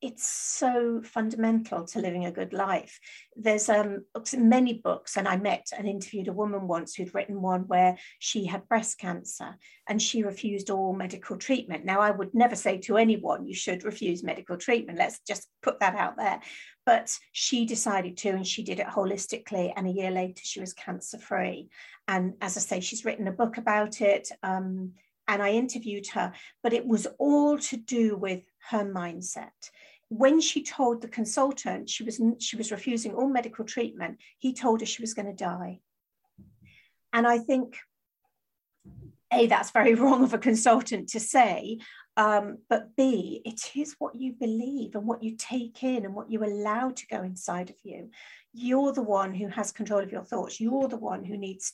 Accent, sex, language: British, female, English